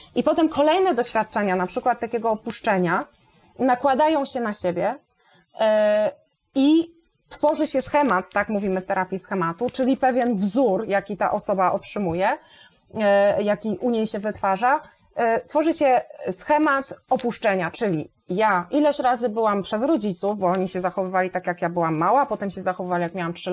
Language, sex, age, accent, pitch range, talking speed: Polish, female, 20-39, native, 195-270 Hz, 150 wpm